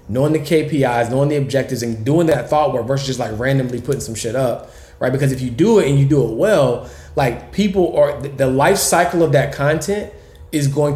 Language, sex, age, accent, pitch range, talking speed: English, male, 20-39, American, 120-145 Hz, 225 wpm